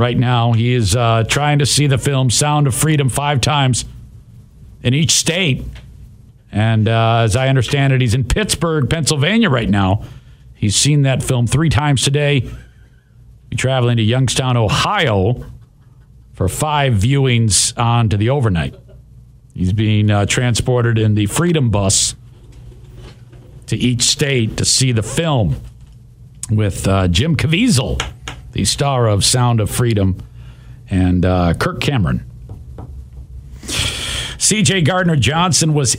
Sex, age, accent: male, 50-69, American